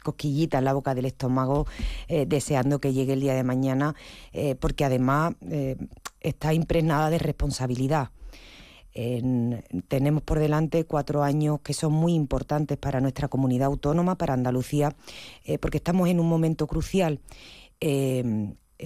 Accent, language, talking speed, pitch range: Spanish, Spanish, 145 wpm, 135-160 Hz